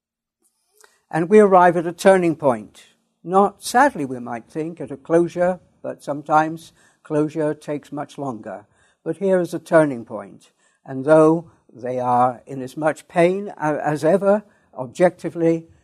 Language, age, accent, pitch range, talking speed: English, 60-79, British, 130-170 Hz, 145 wpm